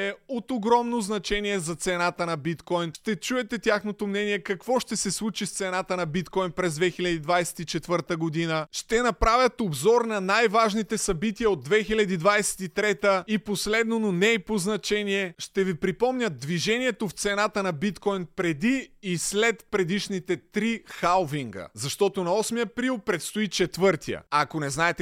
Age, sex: 30-49, male